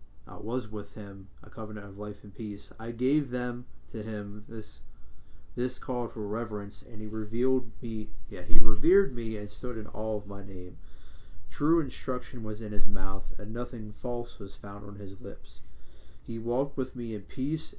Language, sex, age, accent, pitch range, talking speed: English, male, 30-49, American, 100-120 Hz, 185 wpm